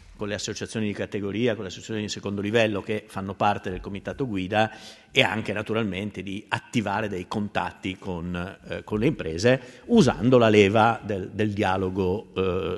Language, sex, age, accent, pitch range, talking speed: Italian, male, 50-69, native, 100-120 Hz, 165 wpm